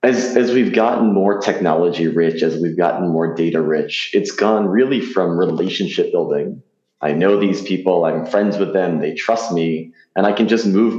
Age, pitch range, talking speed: 20-39, 85-115 Hz, 190 wpm